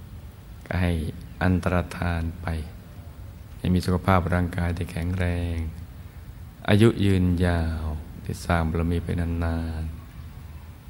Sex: male